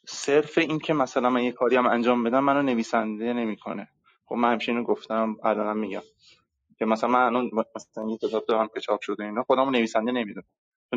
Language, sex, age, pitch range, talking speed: Persian, male, 30-49, 110-140 Hz, 190 wpm